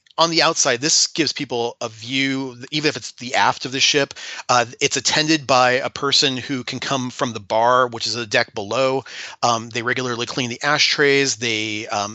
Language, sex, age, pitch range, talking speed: English, male, 30-49, 125-150 Hz, 200 wpm